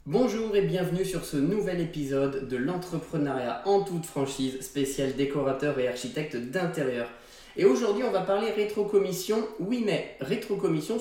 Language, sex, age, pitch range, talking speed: French, male, 20-39, 140-205 Hz, 140 wpm